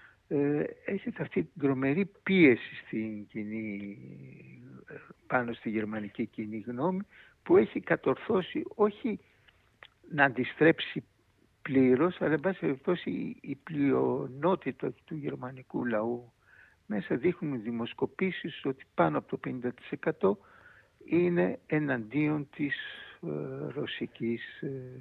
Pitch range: 110-175 Hz